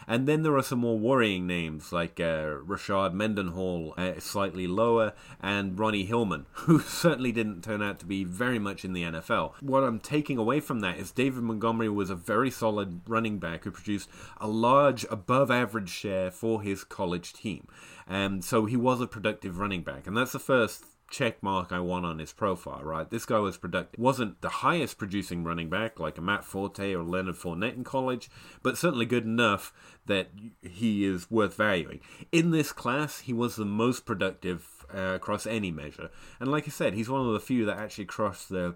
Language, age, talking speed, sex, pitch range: English, 30-49, 200 wpm, male, 90-115 Hz